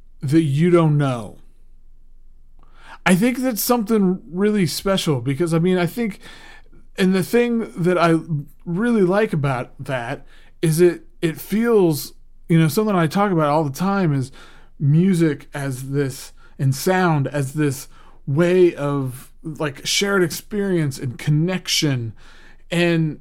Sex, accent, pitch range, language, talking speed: male, American, 140-180 Hz, English, 135 wpm